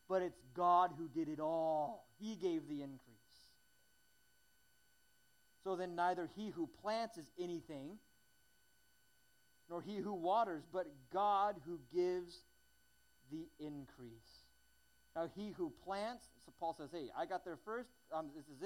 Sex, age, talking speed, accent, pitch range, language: male, 40-59, 140 wpm, American, 165-260 Hz, English